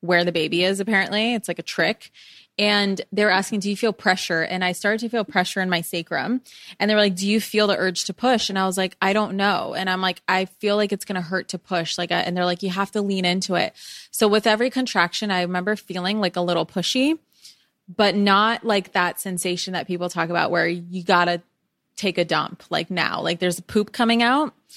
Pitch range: 170-200 Hz